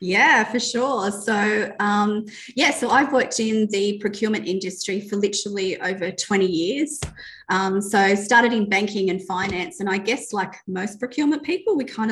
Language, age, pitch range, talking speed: English, 30-49, 180-215 Hz, 175 wpm